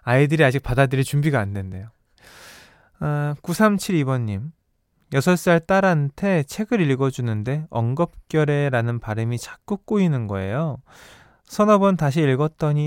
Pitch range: 120-170 Hz